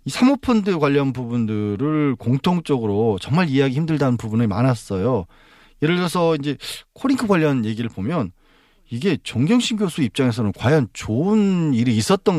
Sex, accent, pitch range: male, native, 120-190 Hz